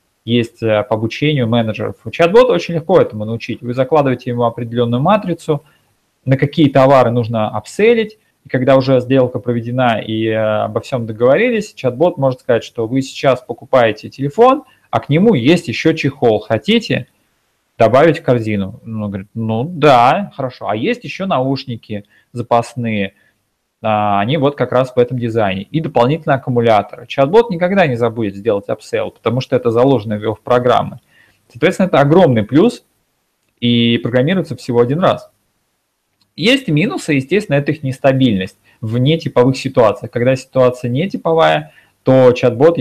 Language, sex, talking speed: Russian, male, 145 wpm